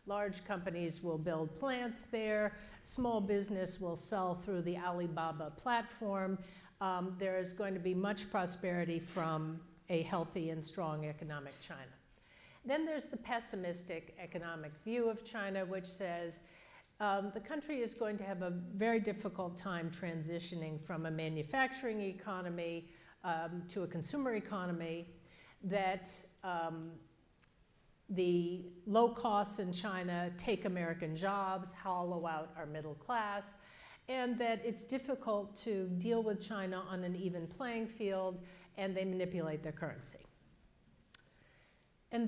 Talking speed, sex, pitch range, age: 135 wpm, female, 170-210 Hz, 60-79